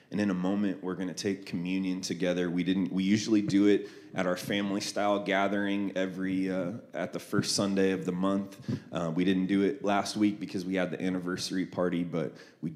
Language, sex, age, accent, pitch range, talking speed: English, male, 20-39, American, 90-105 Hz, 210 wpm